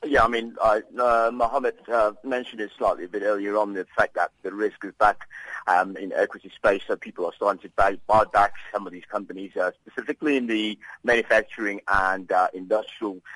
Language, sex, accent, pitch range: English, male, British, 100-125 Hz